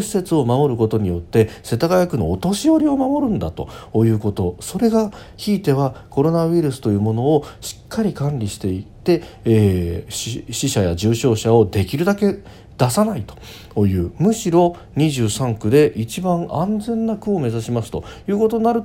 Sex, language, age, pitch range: male, Japanese, 40-59, 100-150 Hz